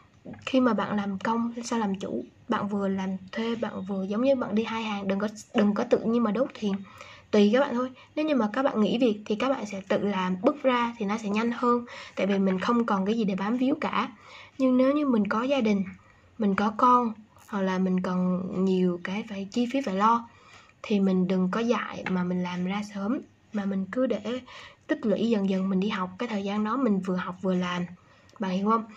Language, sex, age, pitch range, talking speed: Vietnamese, female, 20-39, 195-240 Hz, 245 wpm